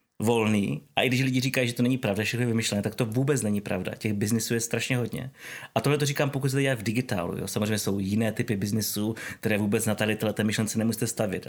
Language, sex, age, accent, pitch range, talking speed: Czech, male, 30-49, native, 110-130 Hz, 245 wpm